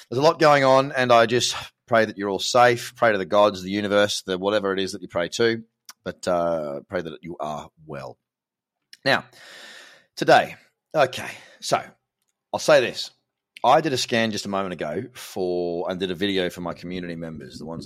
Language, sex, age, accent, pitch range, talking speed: English, male, 30-49, Australian, 95-130 Hz, 200 wpm